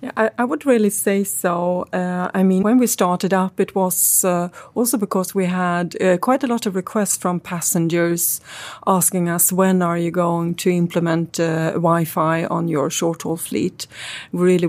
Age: 30-49